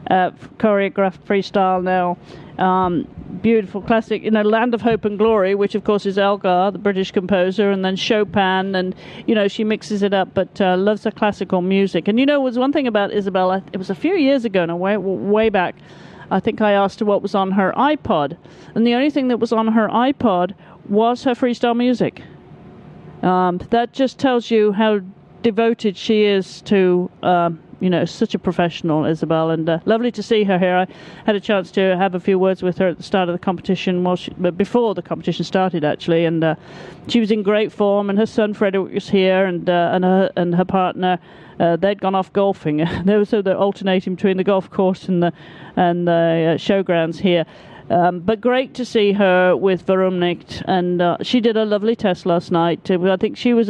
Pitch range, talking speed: 180-215 Hz, 215 wpm